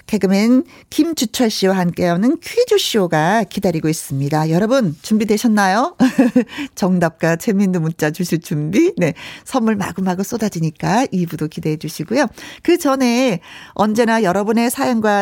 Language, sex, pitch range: Korean, female, 180-265 Hz